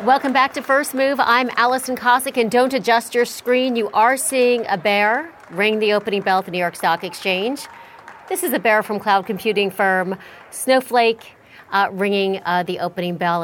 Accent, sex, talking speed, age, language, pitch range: American, female, 190 wpm, 40-59, English, 190-250 Hz